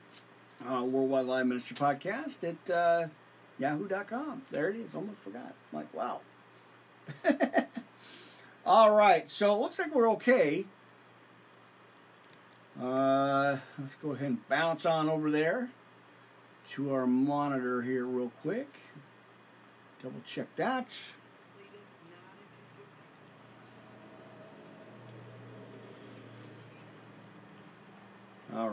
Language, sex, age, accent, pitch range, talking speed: English, male, 50-69, American, 130-185 Hz, 90 wpm